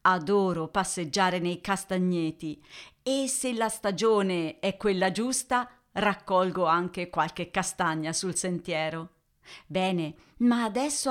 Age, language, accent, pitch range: 50-69, Italian, native, 165-235 Hz